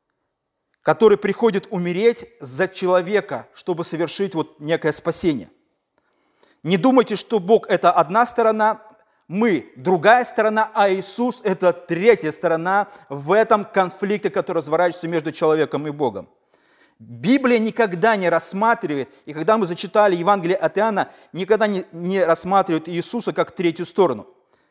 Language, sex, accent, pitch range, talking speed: Russian, male, native, 175-215 Hz, 135 wpm